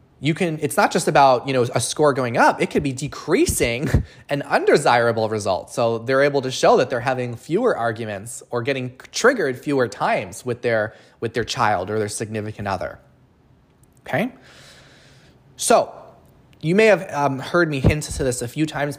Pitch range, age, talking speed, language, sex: 120-145 Hz, 20-39, 180 wpm, English, male